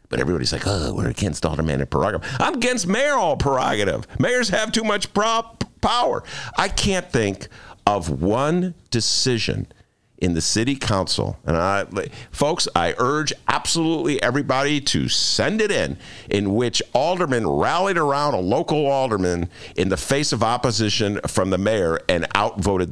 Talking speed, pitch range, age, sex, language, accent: 150 wpm, 110-185 Hz, 50-69, male, English, American